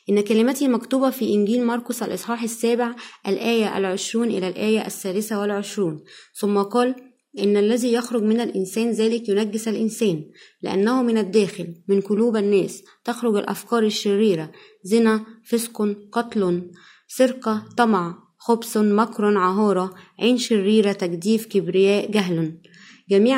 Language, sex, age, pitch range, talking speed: Arabic, female, 20-39, 200-235 Hz, 120 wpm